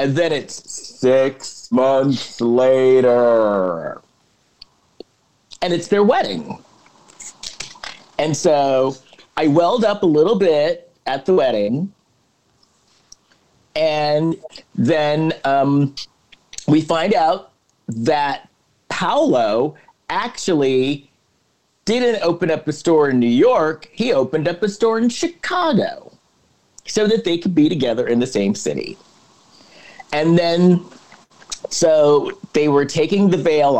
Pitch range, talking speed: 130-175 Hz, 110 wpm